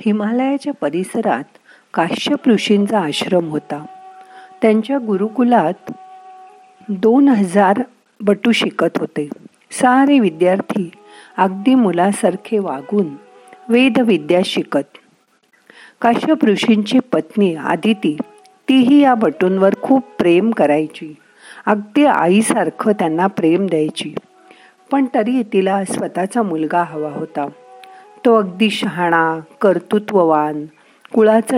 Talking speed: 90 wpm